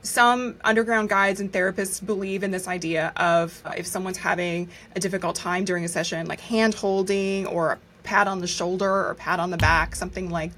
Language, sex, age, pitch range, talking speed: English, female, 20-39, 195-235 Hz, 200 wpm